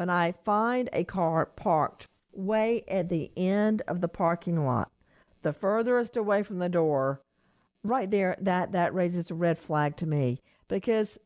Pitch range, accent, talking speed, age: 170-230 Hz, American, 165 wpm, 50-69